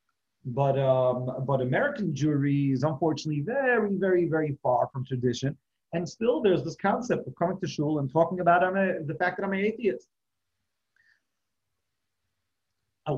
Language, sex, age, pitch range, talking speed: English, male, 40-59, 135-180 Hz, 150 wpm